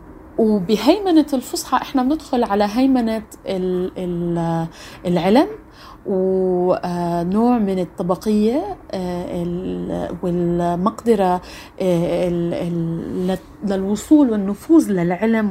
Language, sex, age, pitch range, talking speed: Arabic, female, 30-49, 180-270 Hz, 55 wpm